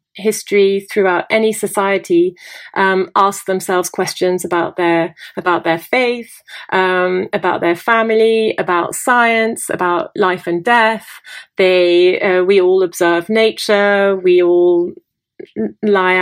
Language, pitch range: English, 185-220 Hz